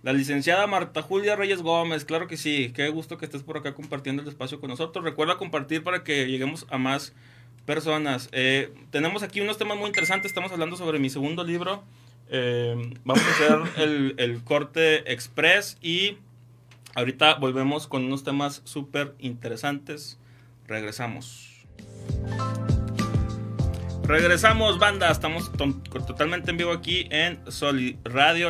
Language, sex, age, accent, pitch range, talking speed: Spanish, male, 20-39, Mexican, 125-160 Hz, 145 wpm